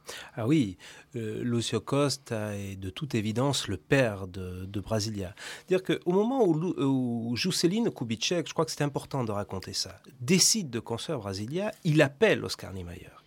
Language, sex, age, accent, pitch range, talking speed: French, male, 40-59, French, 105-165 Hz, 165 wpm